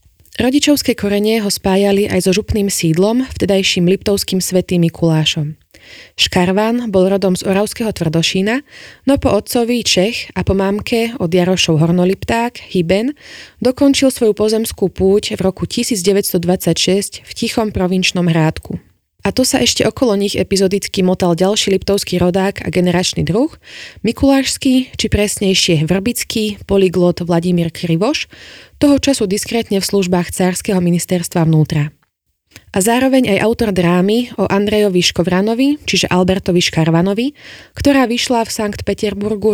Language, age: Slovak, 20-39